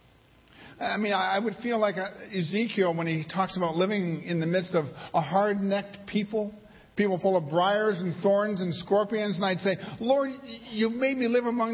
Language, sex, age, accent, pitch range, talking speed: English, male, 60-79, American, 160-220 Hz, 185 wpm